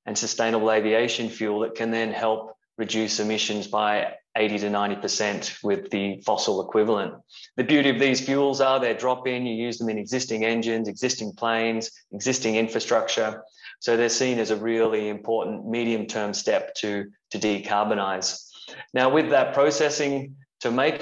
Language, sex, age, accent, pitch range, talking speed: English, male, 20-39, Australian, 110-130 Hz, 160 wpm